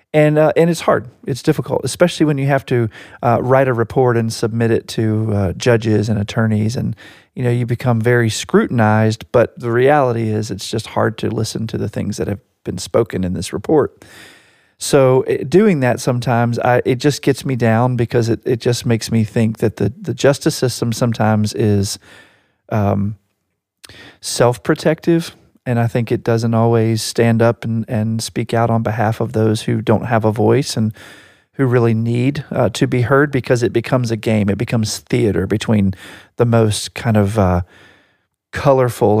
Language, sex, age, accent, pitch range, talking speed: English, male, 40-59, American, 105-125 Hz, 185 wpm